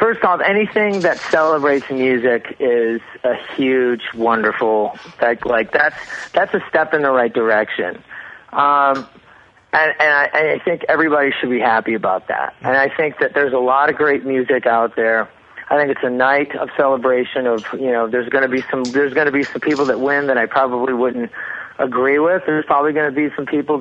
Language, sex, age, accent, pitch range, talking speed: English, male, 30-49, American, 125-155 Hz, 205 wpm